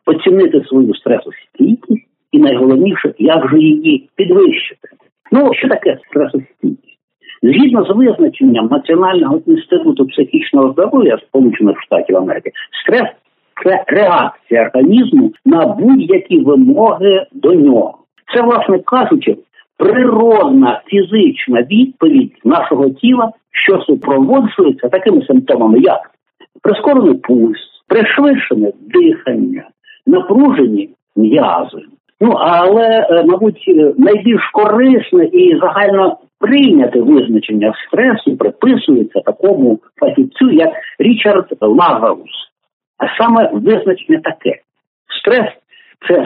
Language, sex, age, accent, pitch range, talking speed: Ukrainian, male, 60-79, native, 220-320 Hz, 95 wpm